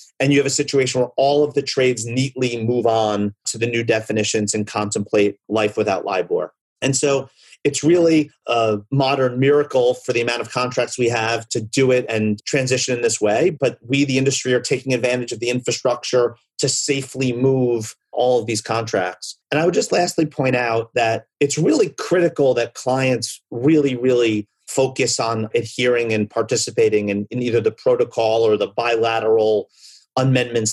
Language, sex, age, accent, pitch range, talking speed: English, male, 30-49, American, 115-145 Hz, 175 wpm